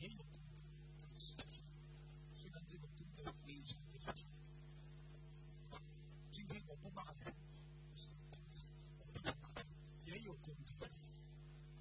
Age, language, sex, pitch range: 50-69, Chinese, male, 150-155 Hz